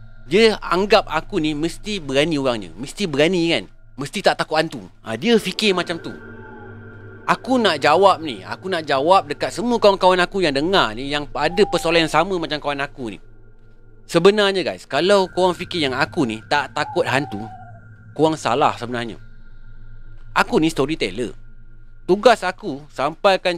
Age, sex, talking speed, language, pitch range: 30-49, male, 160 wpm, Malay, 110-165 Hz